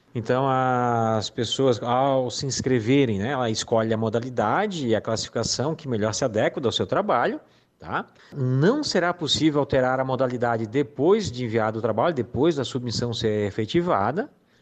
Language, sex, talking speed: Portuguese, male, 155 wpm